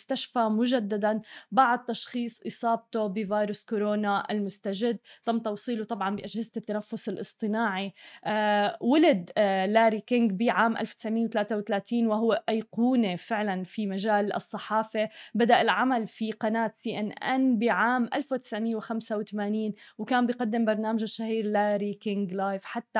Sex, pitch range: female, 205-235 Hz